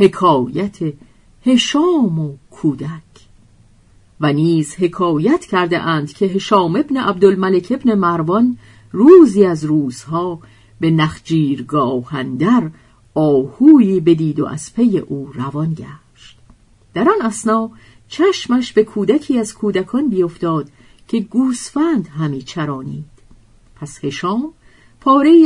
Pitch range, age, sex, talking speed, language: 145-230 Hz, 50-69, female, 105 wpm, Persian